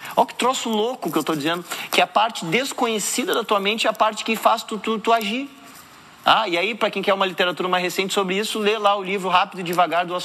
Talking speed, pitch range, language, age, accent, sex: 260 wpm, 155-210 Hz, Portuguese, 30-49, Brazilian, male